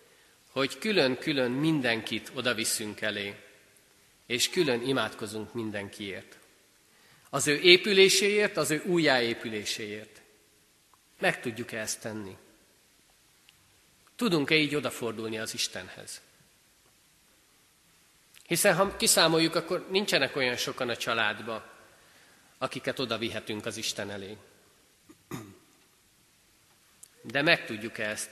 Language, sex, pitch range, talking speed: Hungarian, male, 115-160 Hz, 95 wpm